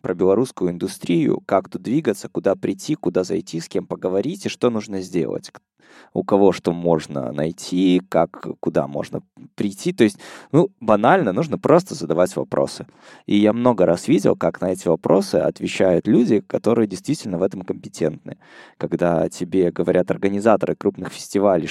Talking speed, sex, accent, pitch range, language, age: 155 wpm, male, native, 85-105 Hz, Russian, 20-39